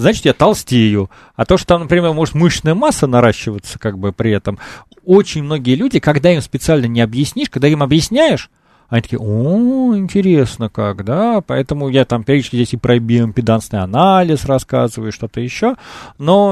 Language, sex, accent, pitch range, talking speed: Russian, male, native, 120-170 Hz, 175 wpm